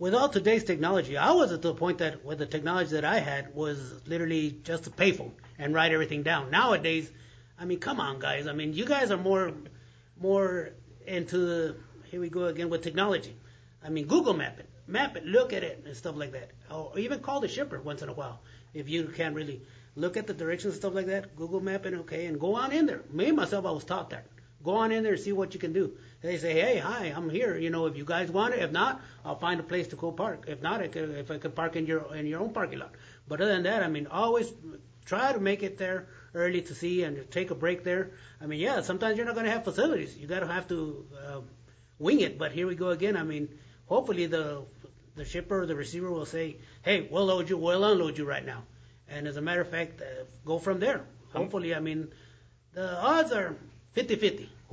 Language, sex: English, male